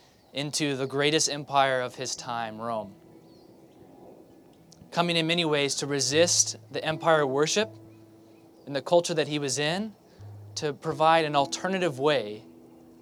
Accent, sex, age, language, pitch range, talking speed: American, male, 20-39, English, 130-165 Hz, 135 wpm